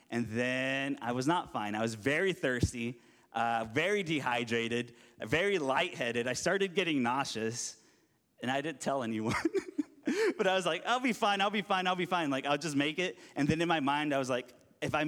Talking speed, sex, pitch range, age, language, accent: 205 wpm, male, 120-155 Hz, 30-49, English, American